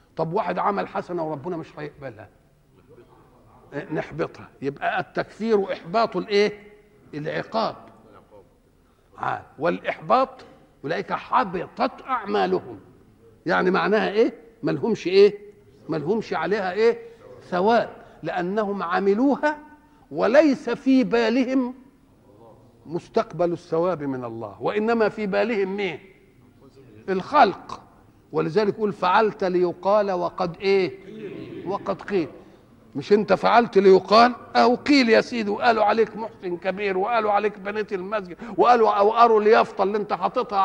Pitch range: 185-235 Hz